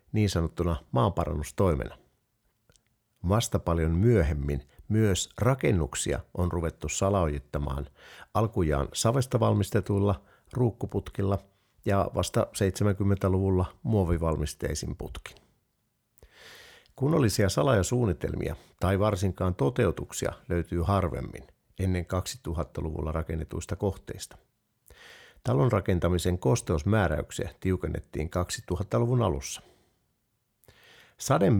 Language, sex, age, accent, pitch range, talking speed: Finnish, male, 50-69, native, 85-110 Hz, 70 wpm